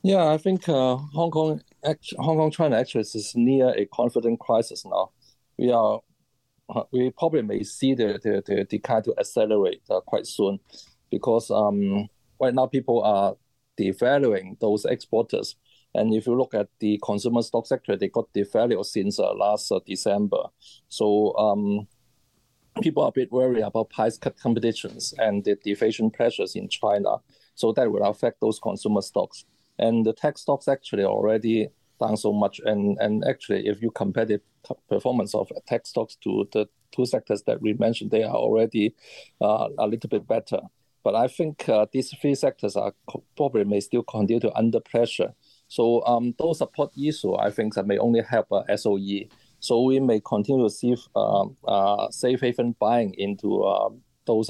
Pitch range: 105-130 Hz